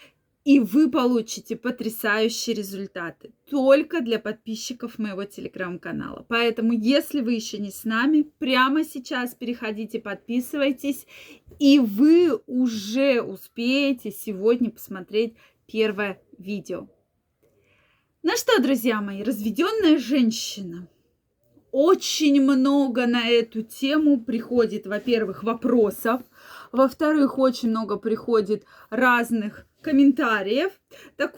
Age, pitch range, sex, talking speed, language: 20-39, 225-285 Hz, female, 100 wpm, Russian